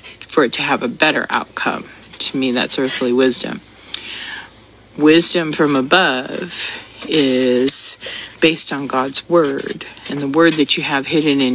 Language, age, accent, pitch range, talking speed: English, 40-59, American, 130-160 Hz, 145 wpm